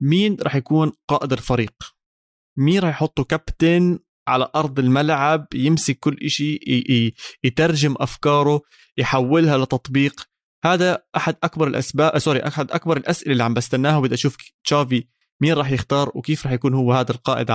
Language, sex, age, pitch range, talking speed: Arabic, male, 20-39, 125-155 Hz, 145 wpm